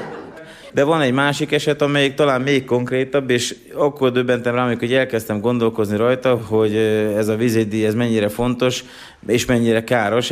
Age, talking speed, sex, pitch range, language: 30-49, 155 wpm, male, 100-125 Hz, Hungarian